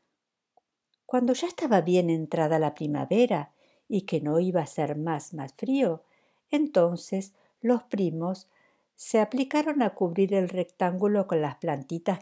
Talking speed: 140 wpm